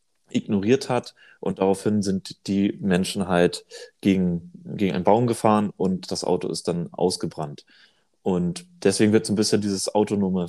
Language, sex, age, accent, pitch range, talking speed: German, male, 30-49, German, 95-120 Hz, 155 wpm